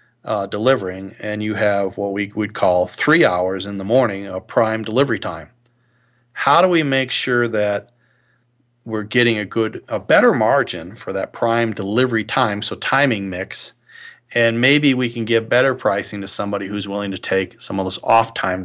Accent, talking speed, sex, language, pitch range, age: American, 185 wpm, male, English, 105-130 Hz, 40-59